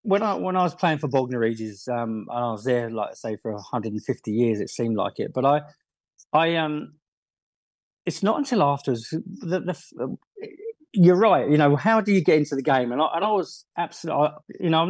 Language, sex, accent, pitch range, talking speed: English, male, British, 125-165 Hz, 220 wpm